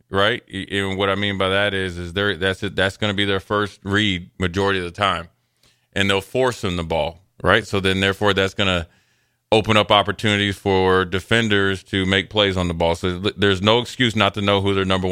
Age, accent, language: 20-39, American, English